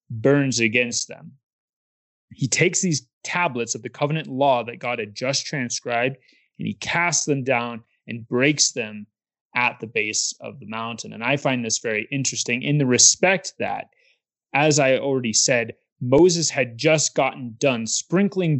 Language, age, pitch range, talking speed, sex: English, 20-39, 120-155 Hz, 160 wpm, male